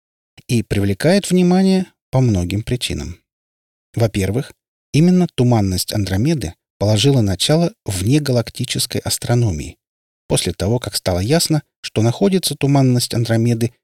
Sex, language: male, Russian